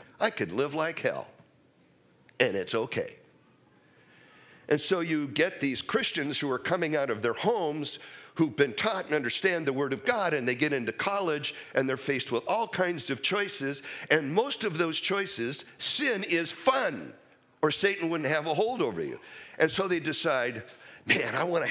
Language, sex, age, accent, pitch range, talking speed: English, male, 50-69, American, 115-180 Hz, 185 wpm